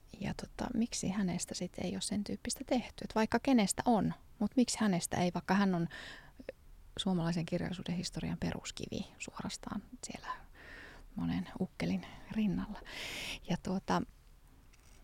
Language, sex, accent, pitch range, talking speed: Finnish, female, native, 175-210 Hz, 130 wpm